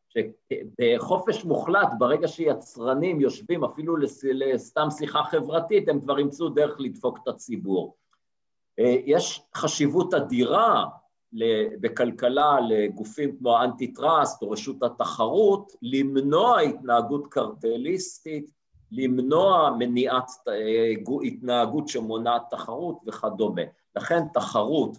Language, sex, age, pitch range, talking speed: Hebrew, male, 50-69, 120-170 Hz, 90 wpm